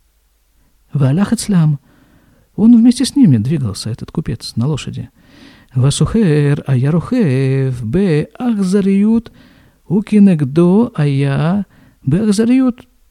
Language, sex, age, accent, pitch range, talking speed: Russian, male, 50-69, native, 130-195 Hz, 60 wpm